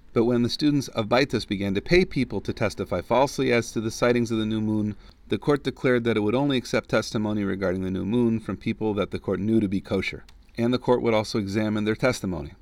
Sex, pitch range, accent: male, 100-120 Hz, American